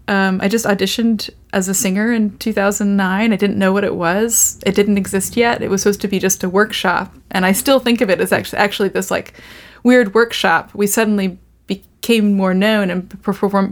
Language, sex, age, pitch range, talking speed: English, female, 20-39, 195-225 Hz, 205 wpm